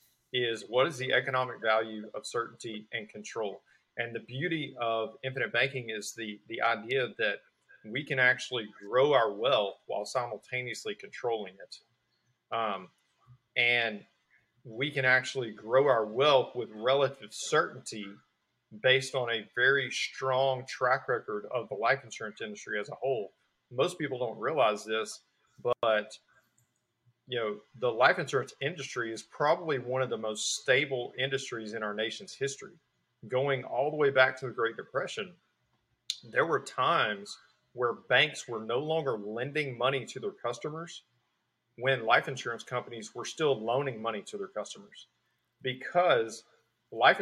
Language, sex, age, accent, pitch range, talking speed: English, male, 40-59, American, 110-130 Hz, 145 wpm